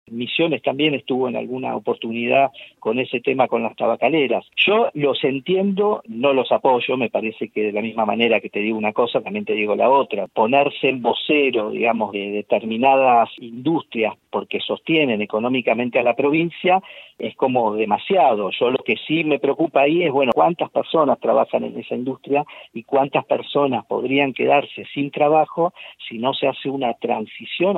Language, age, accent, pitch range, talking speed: Spanish, 50-69, Argentinian, 120-160 Hz, 170 wpm